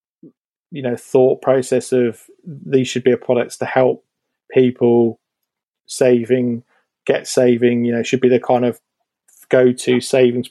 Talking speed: 145 wpm